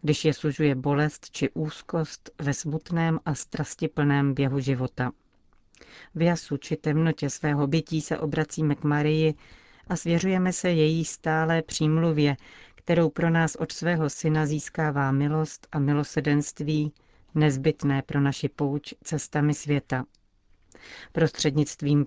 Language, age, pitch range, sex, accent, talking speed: Czech, 40-59, 140-160 Hz, female, native, 120 wpm